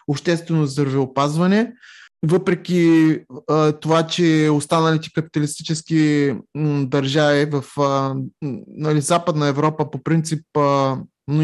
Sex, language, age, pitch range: male, Bulgarian, 20-39, 145-175 Hz